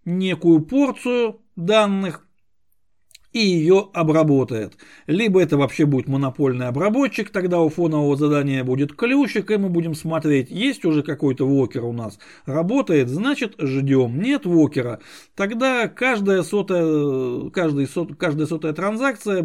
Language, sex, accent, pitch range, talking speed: Russian, male, native, 145-205 Hz, 125 wpm